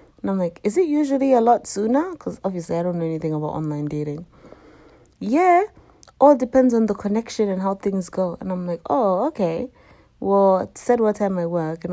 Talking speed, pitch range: 205 wpm, 165-200 Hz